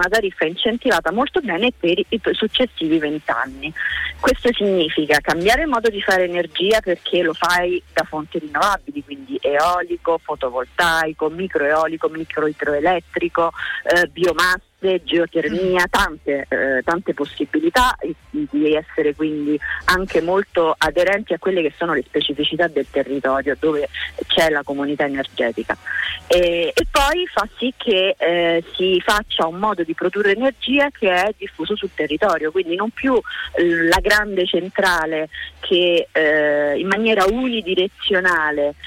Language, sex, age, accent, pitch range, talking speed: Italian, female, 30-49, native, 155-200 Hz, 130 wpm